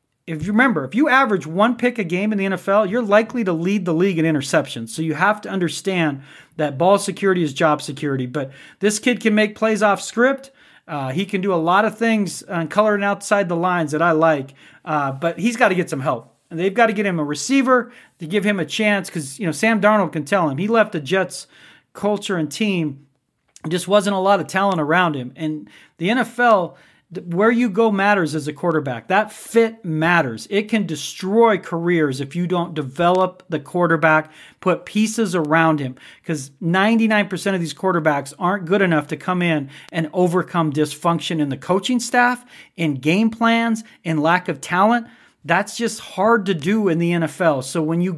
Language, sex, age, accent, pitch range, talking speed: English, male, 40-59, American, 160-210 Hz, 205 wpm